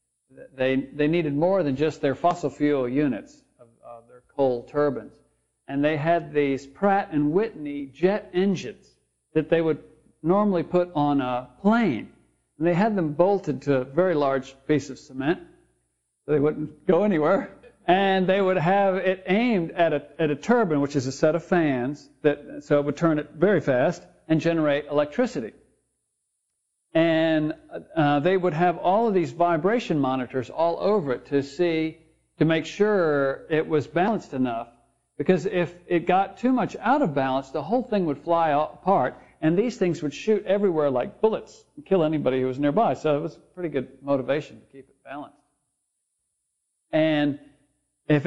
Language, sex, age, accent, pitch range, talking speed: English, male, 60-79, American, 140-180 Hz, 175 wpm